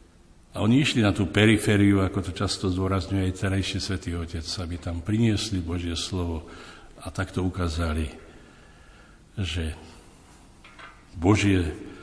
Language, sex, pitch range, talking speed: Slovak, male, 85-105 Hz, 120 wpm